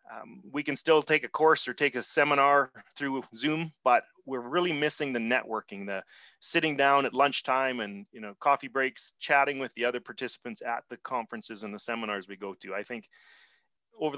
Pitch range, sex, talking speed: 115-140 Hz, male, 195 wpm